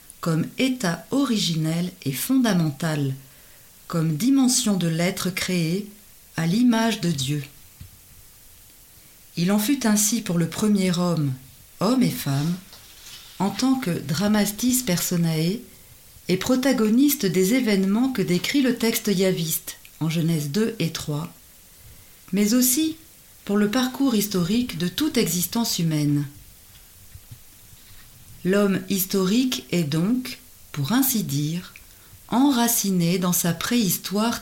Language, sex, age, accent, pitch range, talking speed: French, female, 40-59, French, 145-225 Hz, 115 wpm